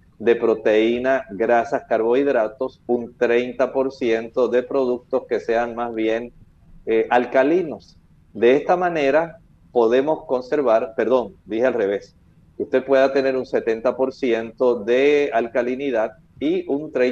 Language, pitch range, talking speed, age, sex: Spanish, 120-150 Hz, 115 wpm, 40-59, male